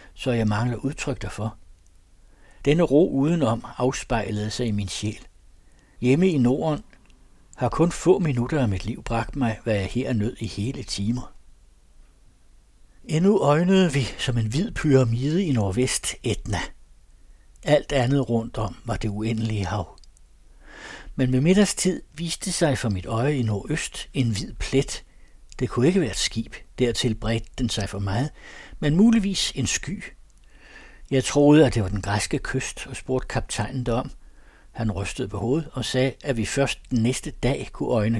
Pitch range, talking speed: 105-140 Hz, 165 wpm